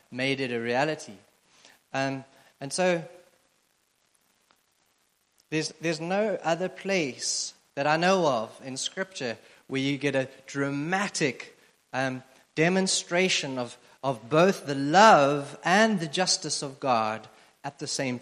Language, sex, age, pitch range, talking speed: English, male, 30-49, 125-160 Hz, 125 wpm